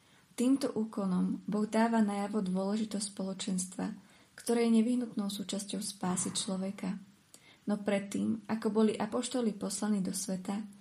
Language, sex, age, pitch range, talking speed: Slovak, female, 20-39, 195-215 Hz, 115 wpm